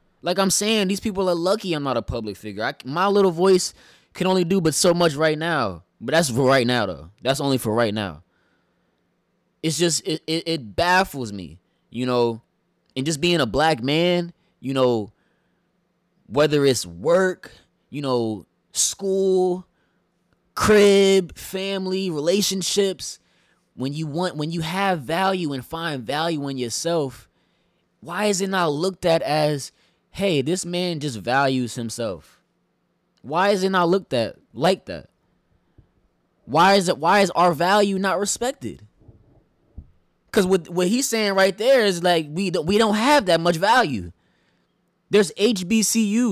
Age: 20-39